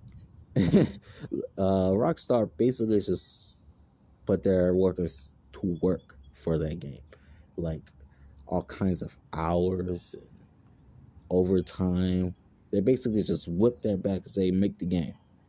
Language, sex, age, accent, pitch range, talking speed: English, male, 30-49, American, 85-110 Hz, 115 wpm